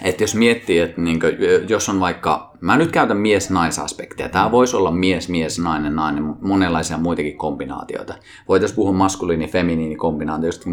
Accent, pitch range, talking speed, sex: native, 85-110 Hz, 155 wpm, male